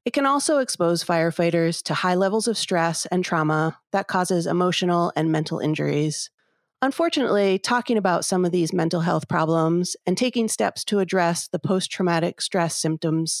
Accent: American